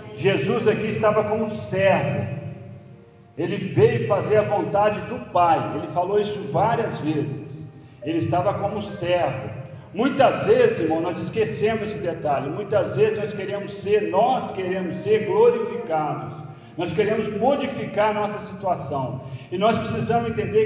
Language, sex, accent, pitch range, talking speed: Portuguese, male, Brazilian, 165-220 Hz, 135 wpm